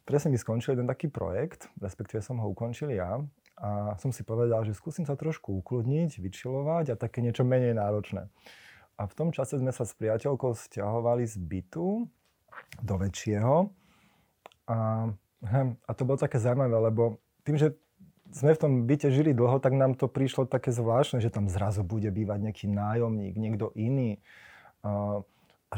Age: 30-49